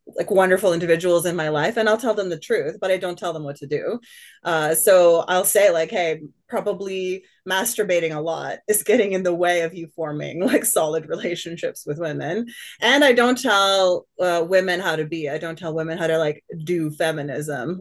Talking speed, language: 205 wpm, English